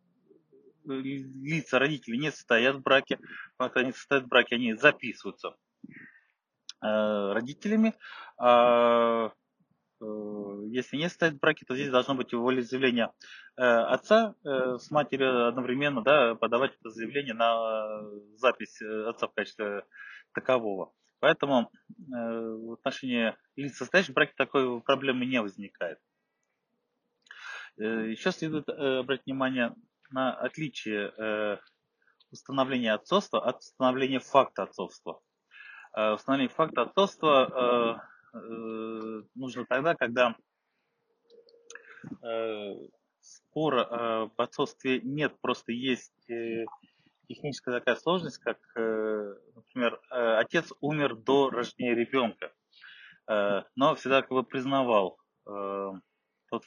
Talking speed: 100 wpm